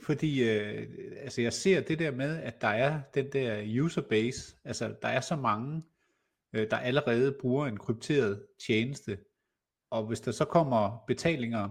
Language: Danish